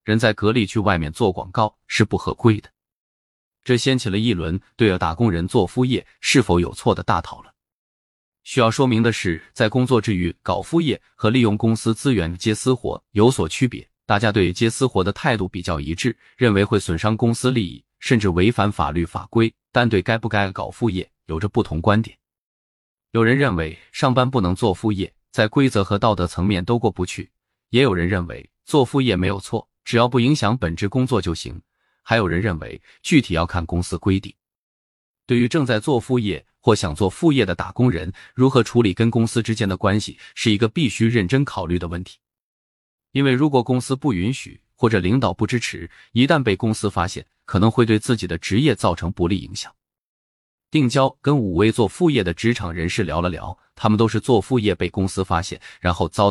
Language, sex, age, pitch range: Chinese, male, 20-39, 90-120 Hz